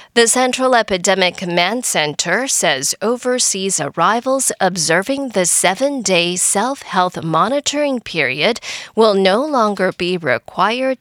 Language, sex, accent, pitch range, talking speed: English, female, American, 180-255 Hz, 105 wpm